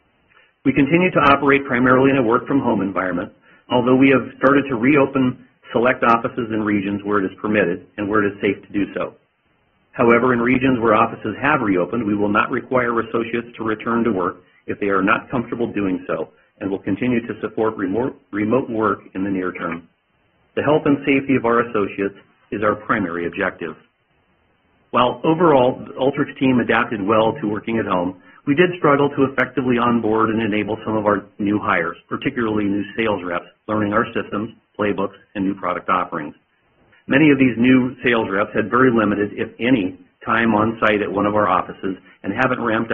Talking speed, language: 185 wpm, English